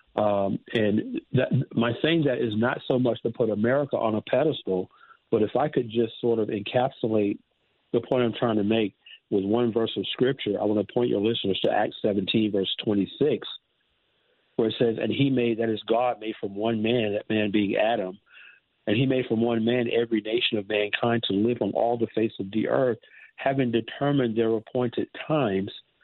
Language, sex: English, male